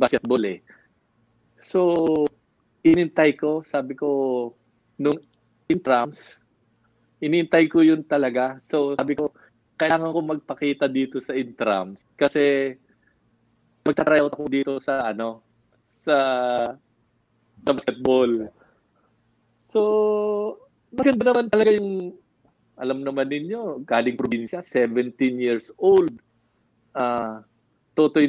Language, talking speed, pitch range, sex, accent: English, 100 wpm, 120-165 Hz, male, Filipino